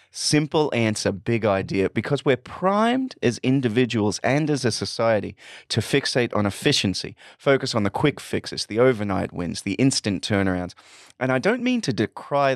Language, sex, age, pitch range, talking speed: English, male, 30-49, 100-135 Hz, 160 wpm